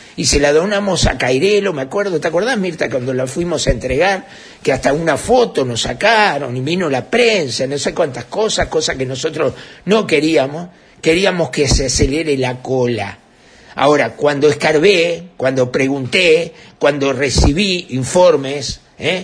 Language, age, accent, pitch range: Spanish, 50-69, Argentinian, 140-210 Hz